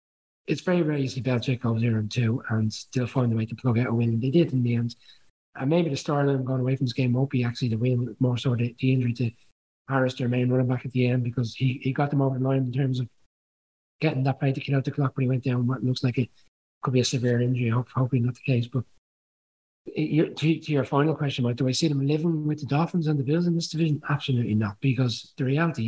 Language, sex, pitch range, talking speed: English, male, 120-140 Hz, 265 wpm